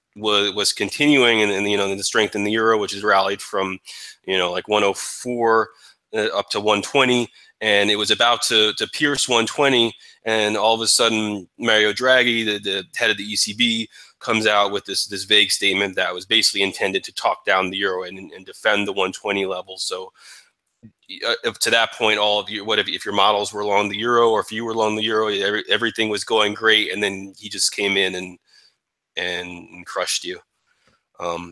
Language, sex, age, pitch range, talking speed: English, male, 20-39, 100-120 Hz, 205 wpm